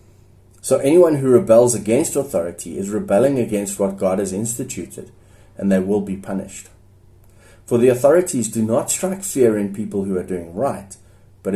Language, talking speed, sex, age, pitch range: English, 165 wpm, male, 30-49, 95-115 Hz